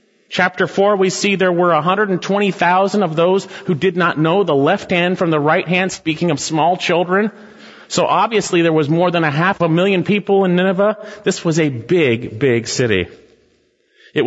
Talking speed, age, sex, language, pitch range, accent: 185 wpm, 40-59, male, English, 135-205 Hz, American